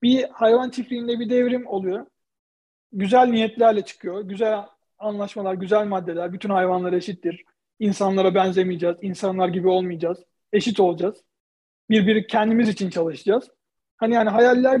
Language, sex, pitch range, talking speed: Turkish, male, 190-225 Hz, 120 wpm